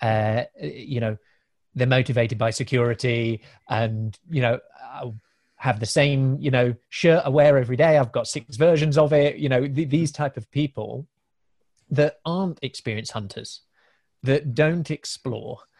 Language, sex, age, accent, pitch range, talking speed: English, male, 30-49, British, 125-150 Hz, 155 wpm